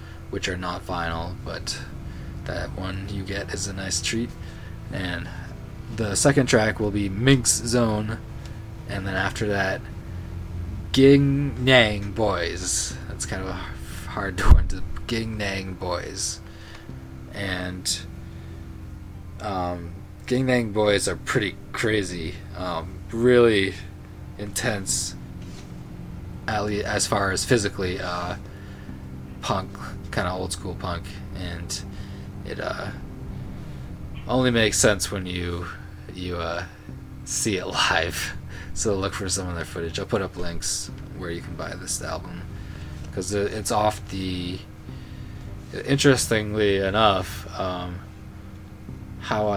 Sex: male